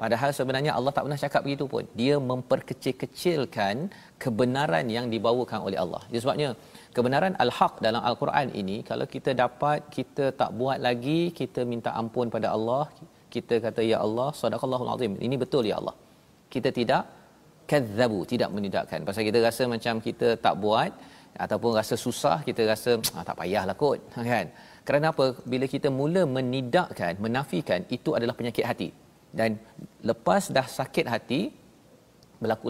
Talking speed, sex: 145 wpm, male